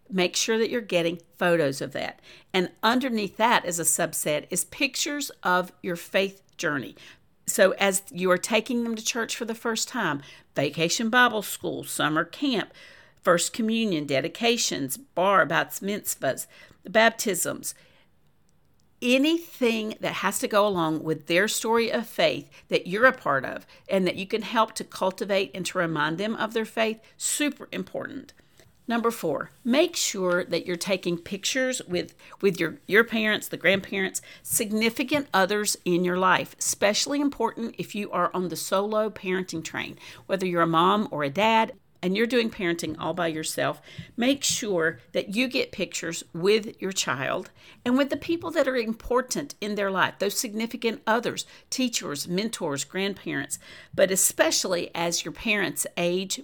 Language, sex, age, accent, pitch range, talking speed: English, female, 50-69, American, 175-230 Hz, 160 wpm